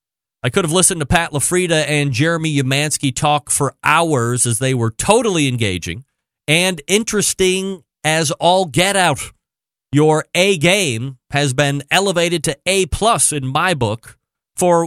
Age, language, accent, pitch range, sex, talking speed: 40-59, English, American, 120-165 Hz, male, 140 wpm